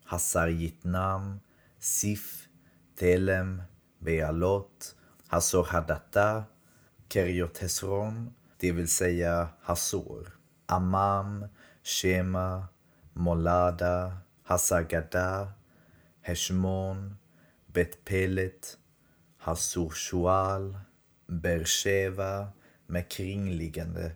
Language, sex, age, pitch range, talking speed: Swedish, male, 30-49, 85-100 Hz, 50 wpm